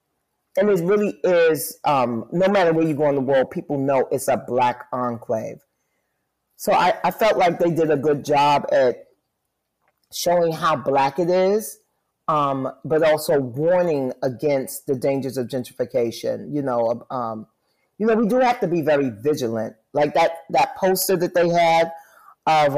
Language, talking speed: English, 170 wpm